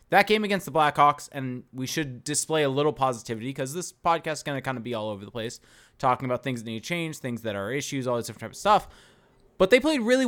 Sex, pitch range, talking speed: male, 125-170 Hz, 270 wpm